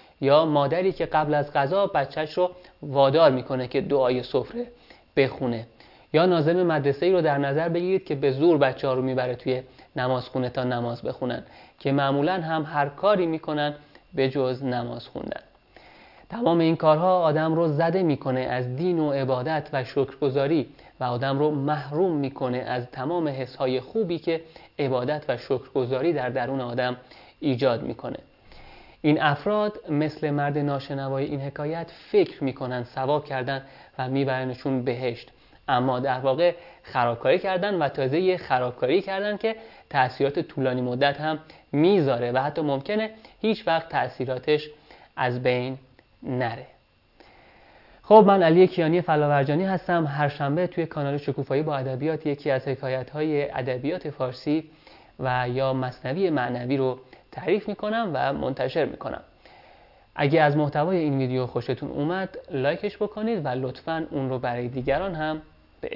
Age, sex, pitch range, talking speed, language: 30-49, male, 130-165 Hz, 145 wpm, Persian